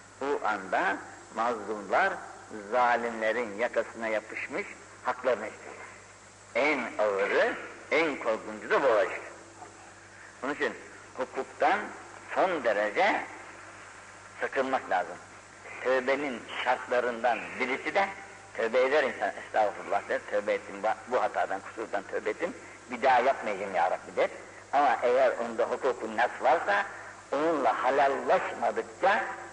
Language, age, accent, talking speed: Turkish, 60-79, native, 100 wpm